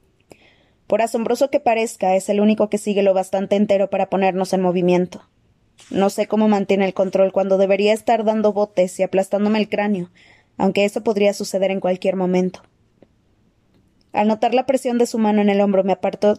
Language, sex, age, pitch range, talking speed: Spanish, female, 20-39, 190-215 Hz, 185 wpm